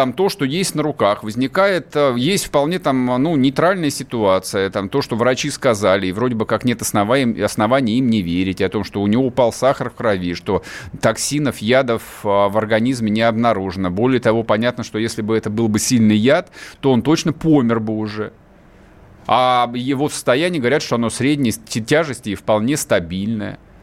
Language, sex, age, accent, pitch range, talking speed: Russian, male, 30-49, native, 110-150 Hz, 180 wpm